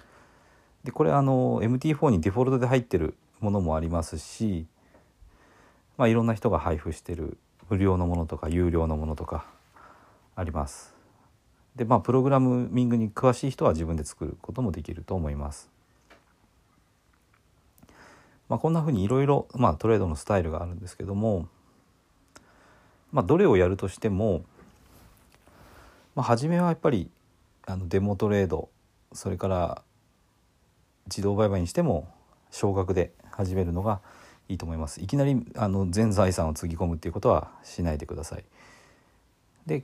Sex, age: male, 40-59